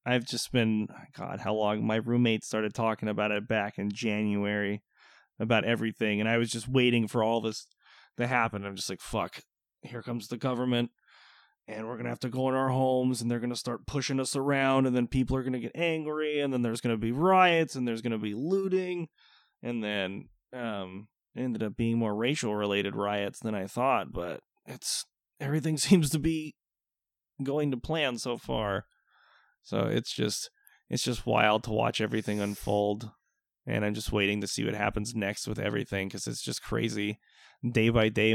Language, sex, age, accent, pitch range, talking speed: English, male, 20-39, American, 105-125 Hz, 200 wpm